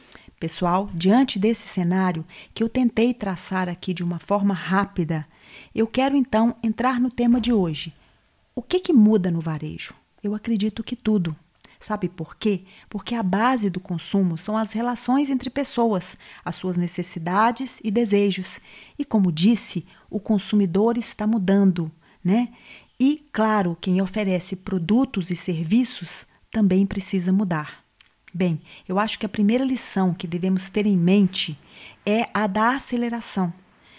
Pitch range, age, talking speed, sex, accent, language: 185-225 Hz, 40-59, 145 wpm, female, Brazilian, Portuguese